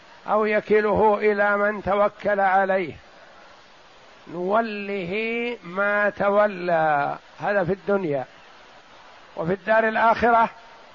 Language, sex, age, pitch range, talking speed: Arabic, male, 60-79, 195-220 Hz, 80 wpm